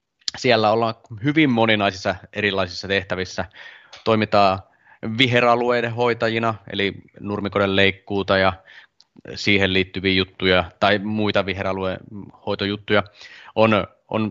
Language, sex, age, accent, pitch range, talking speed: Finnish, male, 20-39, native, 95-110 Hz, 90 wpm